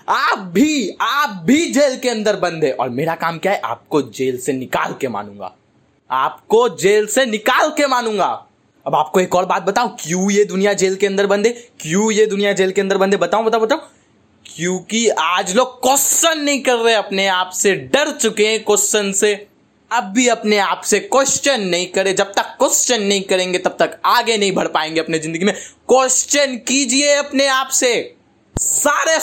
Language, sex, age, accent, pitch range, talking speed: Hindi, male, 20-39, native, 170-255 Hz, 185 wpm